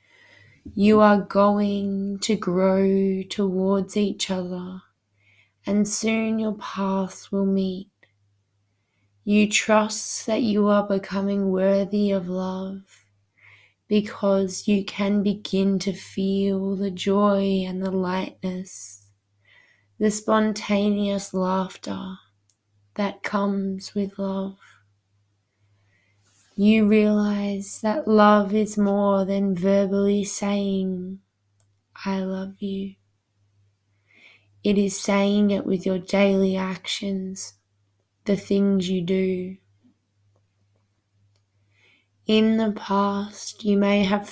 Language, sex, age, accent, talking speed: English, female, 20-39, Australian, 95 wpm